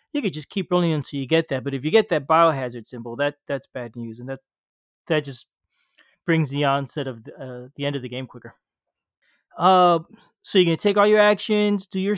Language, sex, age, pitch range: English, male, 30-49, 140-190 Hz